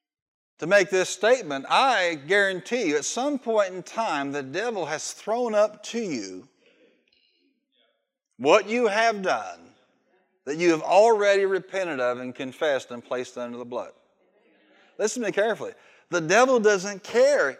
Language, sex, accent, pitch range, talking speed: English, male, American, 185-260 Hz, 150 wpm